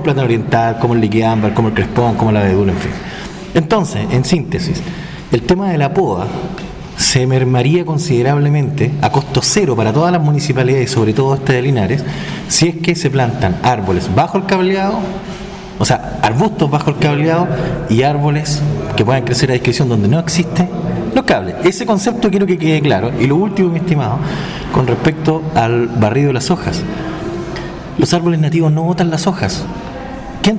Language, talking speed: Spanish, 175 wpm